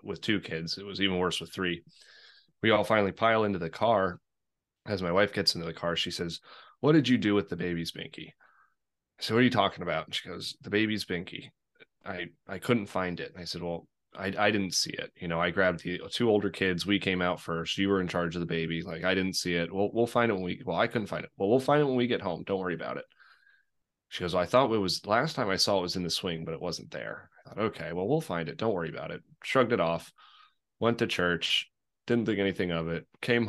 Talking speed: 265 wpm